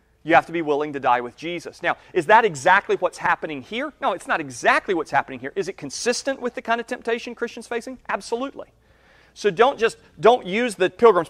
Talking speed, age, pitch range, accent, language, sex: 210 wpm, 40-59, 155-220 Hz, American, English, male